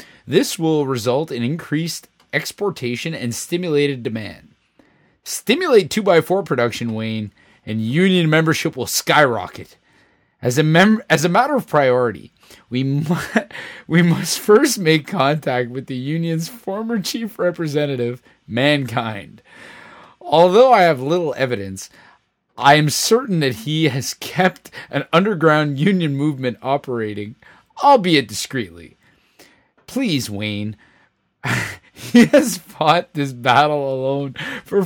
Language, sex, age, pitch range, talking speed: English, male, 30-49, 135-195 Hz, 115 wpm